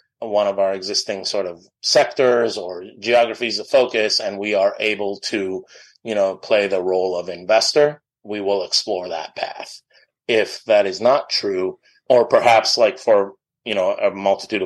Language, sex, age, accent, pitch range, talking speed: English, male, 30-49, American, 100-115 Hz, 170 wpm